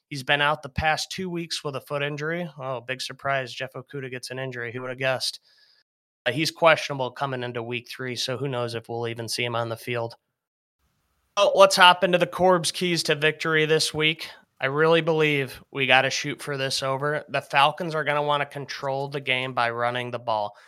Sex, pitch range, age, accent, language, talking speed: male, 125-145 Hz, 30-49, American, English, 220 wpm